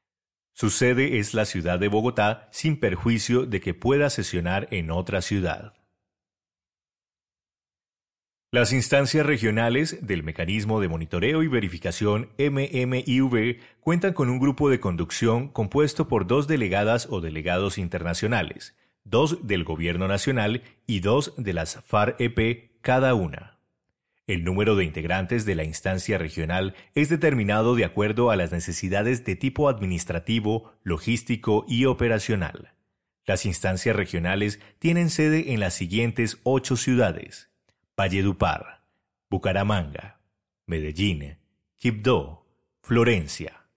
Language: Spanish